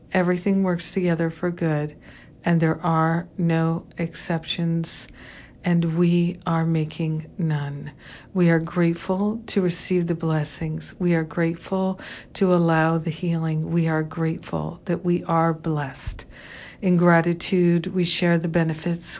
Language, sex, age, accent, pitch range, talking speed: English, female, 60-79, American, 160-180 Hz, 130 wpm